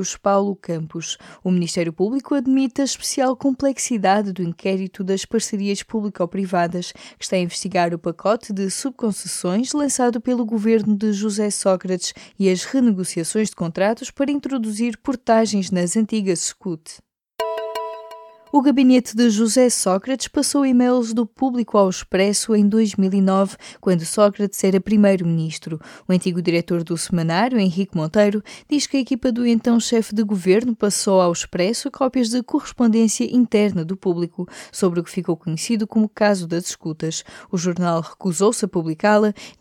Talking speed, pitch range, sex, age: 145 wpm, 180-235 Hz, female, 20-39